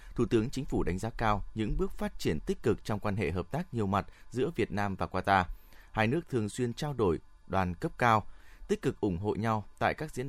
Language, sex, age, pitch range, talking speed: Vietnamese, male, 20-39, 95-115 Hz, 245 wpm